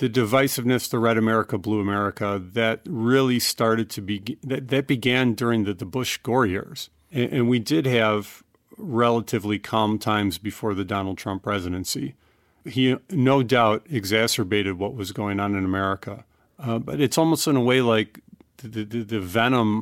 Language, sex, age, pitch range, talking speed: English, male, 40-59, 105-130 Hz, 165 wpm